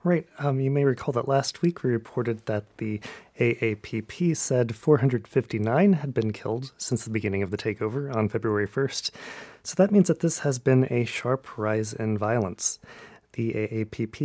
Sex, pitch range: male, 110-135 Hz